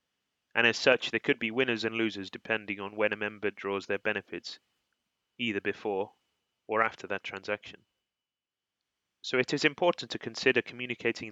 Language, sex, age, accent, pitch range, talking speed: English, male, 20-39, British, 105-115 Hz, 160 wpm